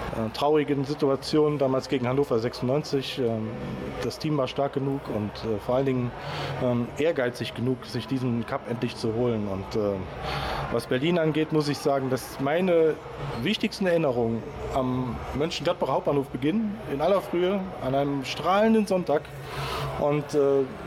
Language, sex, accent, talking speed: German, male, German, 130 wpm